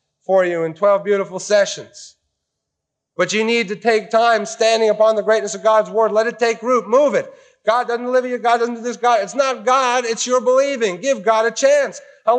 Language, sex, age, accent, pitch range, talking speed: English, male, 40-59, American, 195-245 Hz, 220 wpm